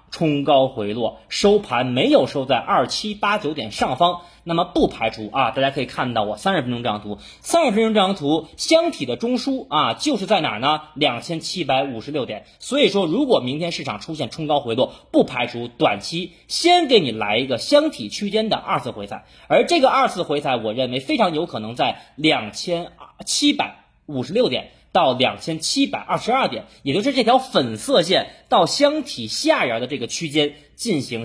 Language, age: Chinese, 30-49